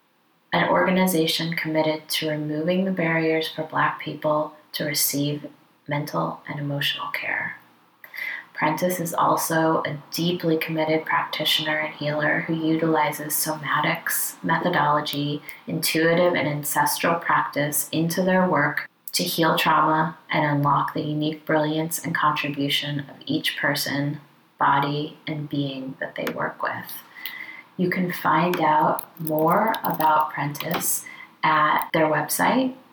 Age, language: 20-39, English